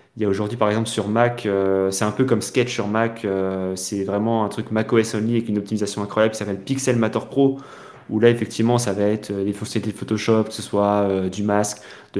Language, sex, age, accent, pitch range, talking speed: French, male, 20-39, French, 100-120 Hz, 235 wpm